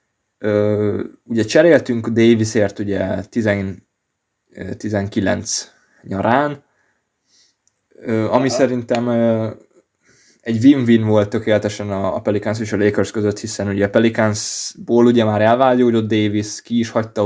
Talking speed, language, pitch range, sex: 100 wpm, Hungarian, 105-120 Hz, male